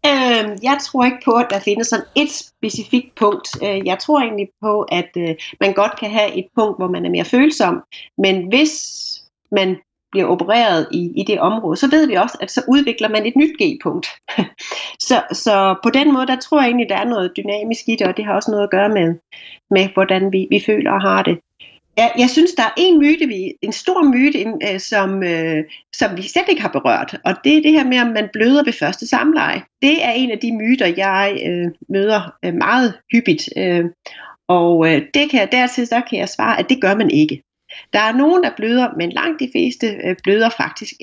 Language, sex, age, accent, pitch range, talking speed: Danish, female, 30-49, native, 195-275 Hz, 205 wpm